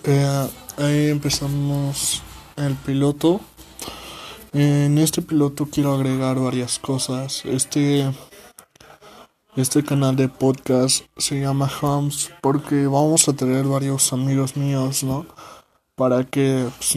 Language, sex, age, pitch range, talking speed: Spanish, male, 20-39, 130-145 Hz, 115 wpm